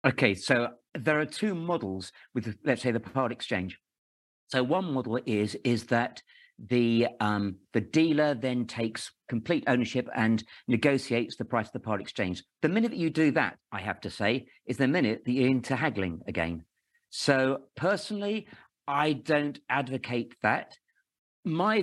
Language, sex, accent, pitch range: English, male, British, 115-145 Hz